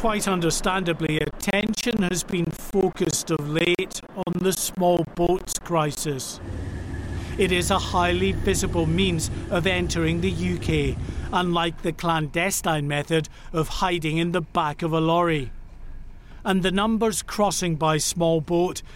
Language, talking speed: English, 135 wpm